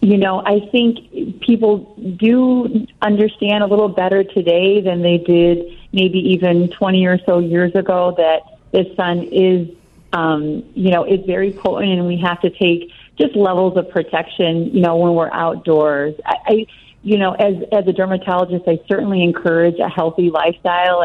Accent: American